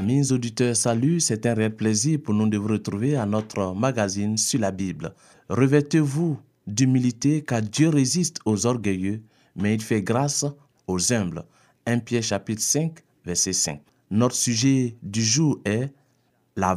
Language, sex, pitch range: French, male, 110-135 Hz